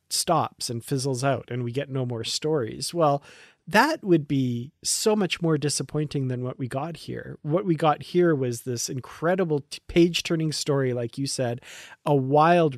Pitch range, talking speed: 125-155 Hz, 180 wpm